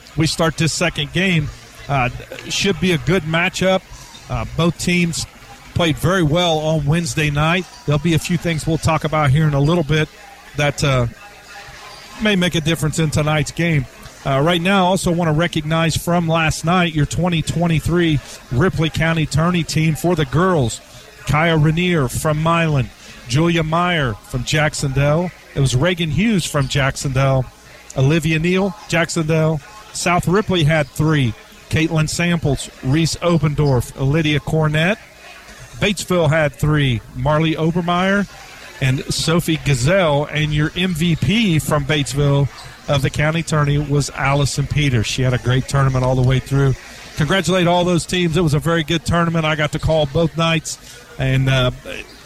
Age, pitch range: 40-59, 140-170 Hz